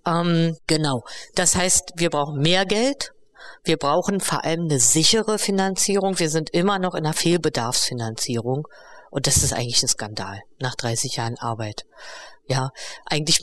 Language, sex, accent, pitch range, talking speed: German, female, German, 140-175 Hz, 145 wpm